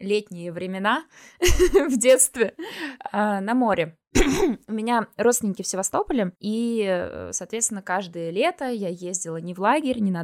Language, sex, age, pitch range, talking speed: Russian, female, 20-39, 200-255 Hz, 130 wpm